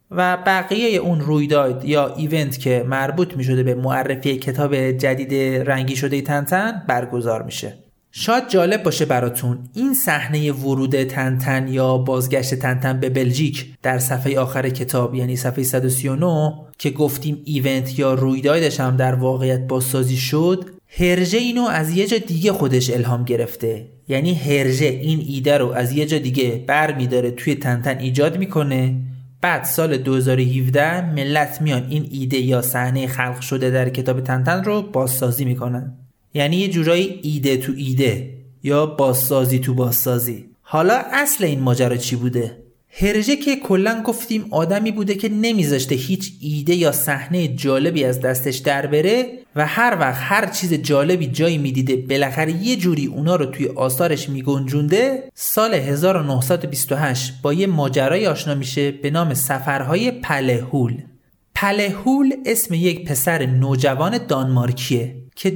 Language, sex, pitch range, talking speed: Persian, male, 130-170 Hz, 145 wpm